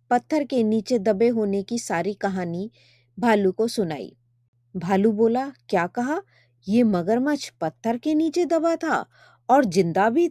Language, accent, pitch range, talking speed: Hindi, native, 180-245 Hz, 140 wpm